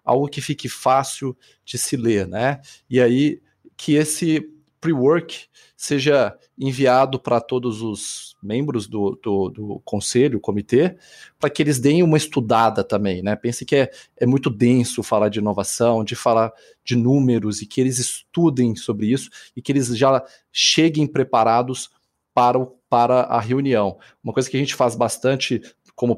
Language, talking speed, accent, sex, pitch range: Portuguese, 155 wpm, Brazilian, male, 115-140 Hz